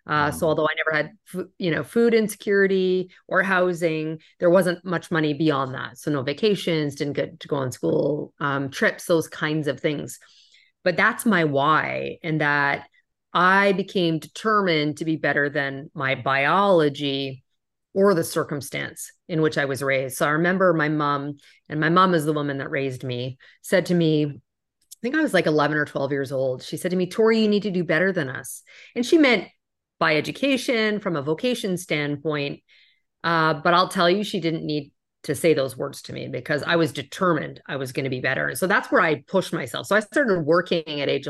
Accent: American